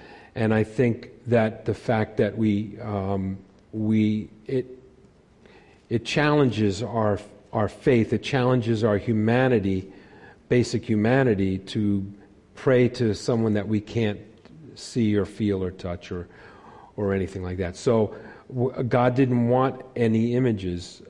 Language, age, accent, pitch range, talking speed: English, 50-69, American, 105-120 Hz, 130 wpm